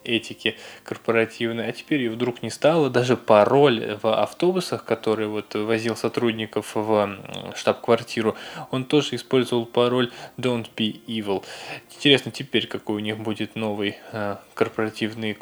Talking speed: 130 wpm